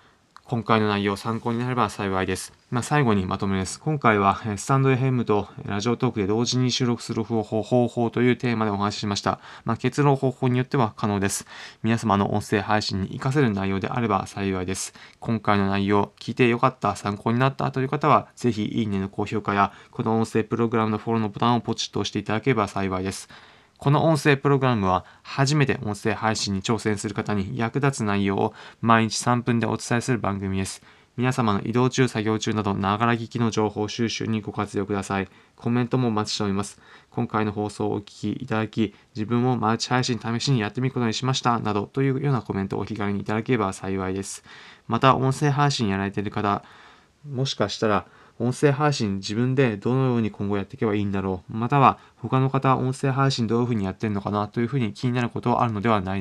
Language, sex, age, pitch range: Japanese, male, 20-39, 100-125 Hz